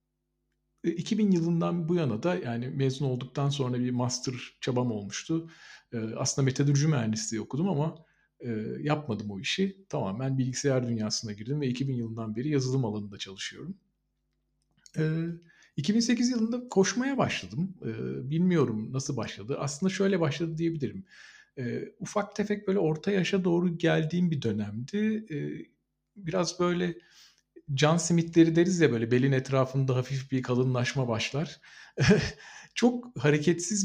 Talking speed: 120 wpm